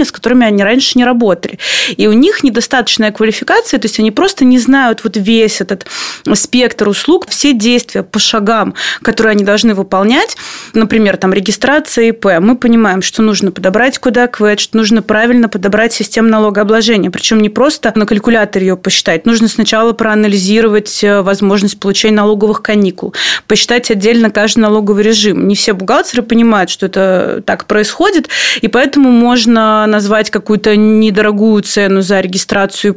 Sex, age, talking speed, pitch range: female, 20-39, 150 wpm, 205-235 Hz